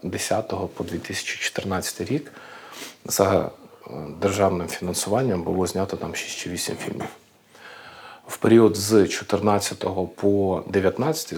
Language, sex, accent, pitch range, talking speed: Ukrainian, male, native, 95-105 Hz, 105 wpm